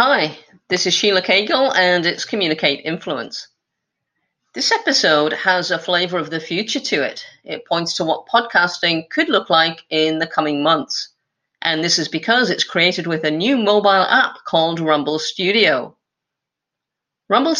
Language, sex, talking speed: English, female, 155 wpm